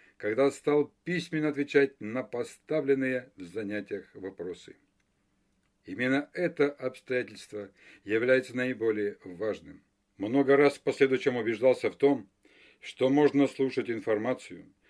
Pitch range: 110-145 Hz